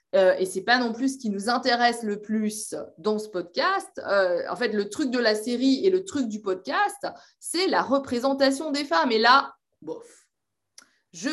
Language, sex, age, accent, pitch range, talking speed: French, female, 20-39, French, 205-290 Hz, 200 wpm